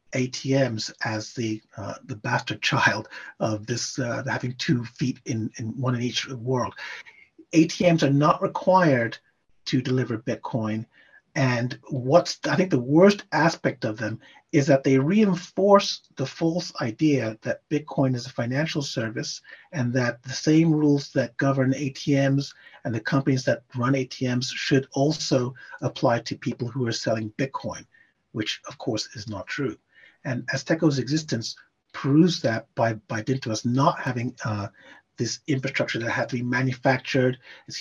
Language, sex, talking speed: English, male, 150 wpm